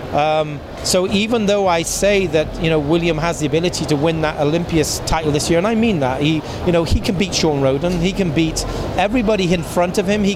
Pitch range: 140-165 Hz